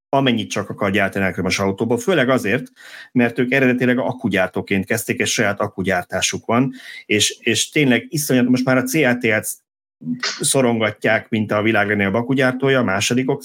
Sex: male